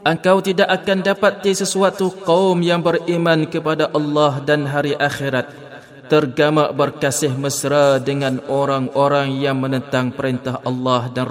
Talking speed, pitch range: 120 wpm, 130-165 Hz